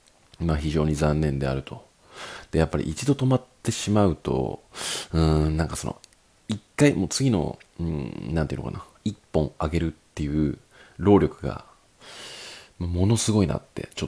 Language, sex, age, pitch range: Japanese, male, 40-59, 80-115 Hz